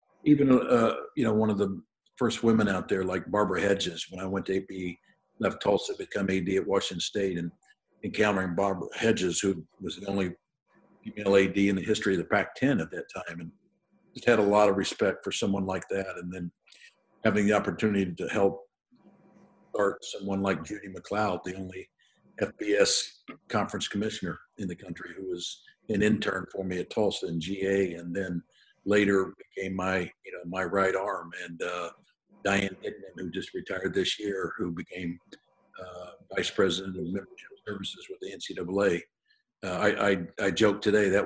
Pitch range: 95-105 Hz